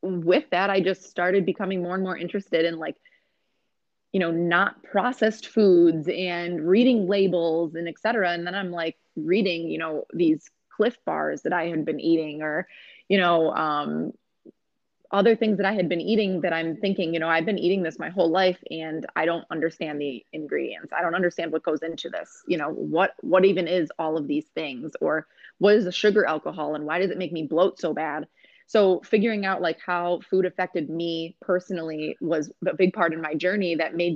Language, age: English, 20-39